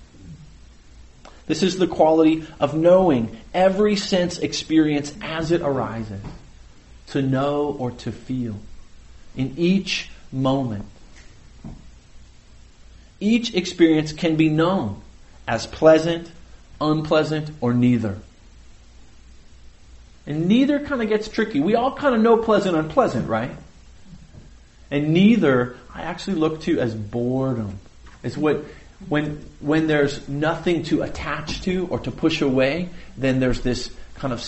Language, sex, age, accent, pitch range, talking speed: English, male, 40-59, American, 115-165 Hz, 120 wpm